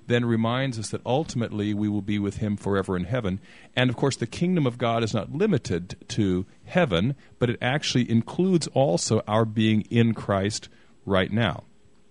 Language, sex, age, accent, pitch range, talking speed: English, male, 40-59, American, 100-125 Hz, 180 wpm